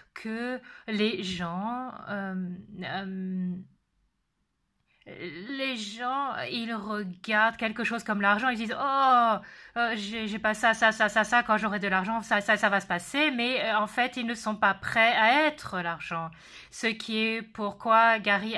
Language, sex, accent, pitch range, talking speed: English, female, French, 200-245 Hz, 170 wpm